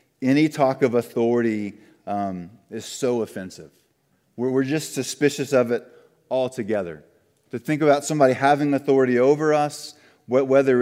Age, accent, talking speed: 30-49, American, 135 wpm